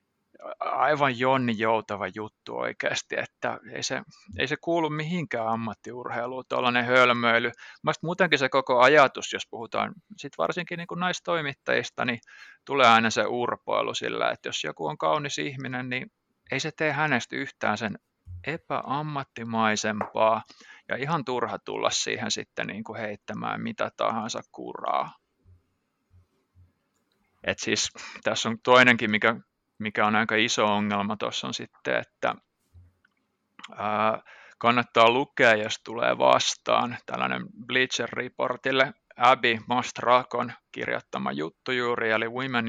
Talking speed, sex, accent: 120 wpm, male, native